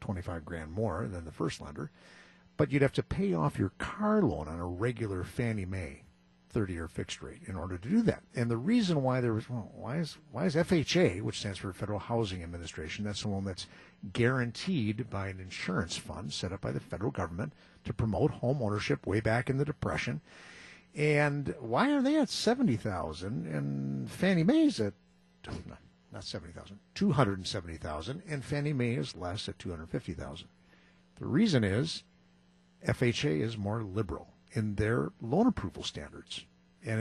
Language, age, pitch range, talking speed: English, 50-69, 95-150 Hz, 190 wpm